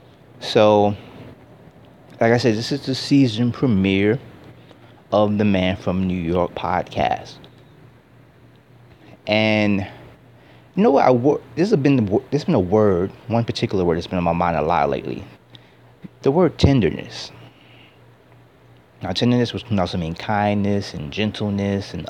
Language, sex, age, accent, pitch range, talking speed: English, male, 30-49, American, 100-135 Hz, 150 wpm